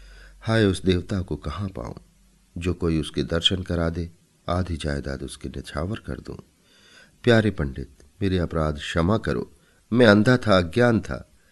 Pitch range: 80-105 Hz